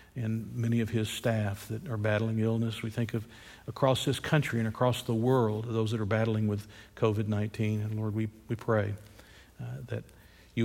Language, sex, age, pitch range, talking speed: English, male, 50-69, 110-125 Hz, 185 wpm